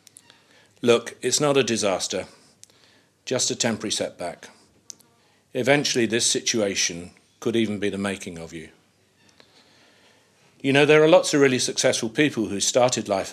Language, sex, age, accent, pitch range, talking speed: English, male, 40-59, British, 100-125 Hz, 140 wpm